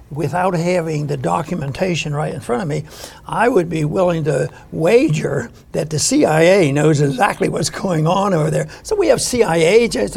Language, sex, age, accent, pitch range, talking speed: English, male, 60-79, American, 165-225 Hz, 175 wpm